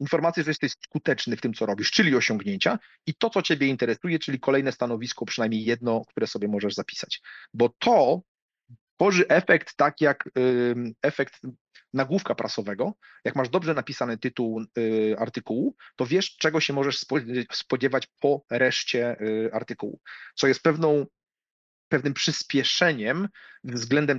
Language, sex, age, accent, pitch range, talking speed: Polish, male, 40-59, native, 125-155 Hz, 135 wpm